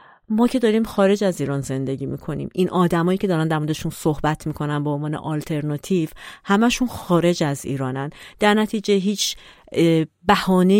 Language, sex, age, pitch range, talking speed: Persian, female, 40-59, 145-190 Hz, 150 wpm